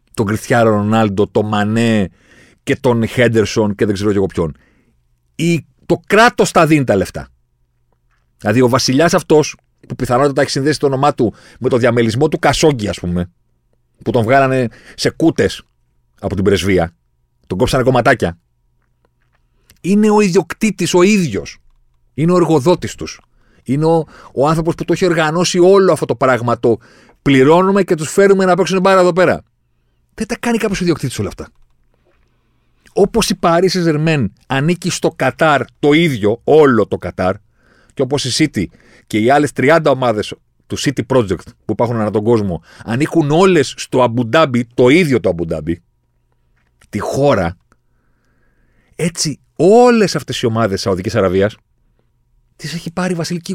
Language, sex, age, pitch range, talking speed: Greek, male, 40-59, 100-165 Hz, 150 wpm